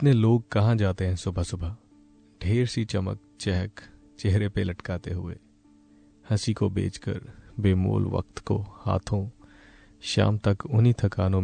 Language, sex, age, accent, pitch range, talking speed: Hindi, male, 30-49, native, 100-115 Hz, 135 wpm